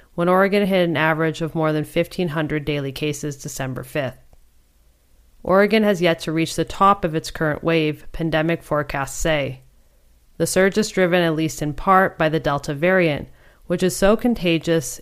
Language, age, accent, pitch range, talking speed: English, 30-49, American, 150-180 Hz, 170 wpm